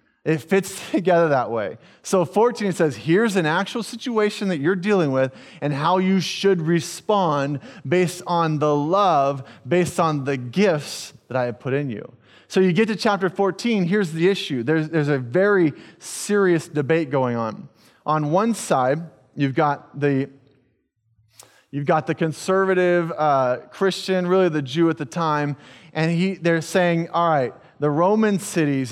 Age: 30-49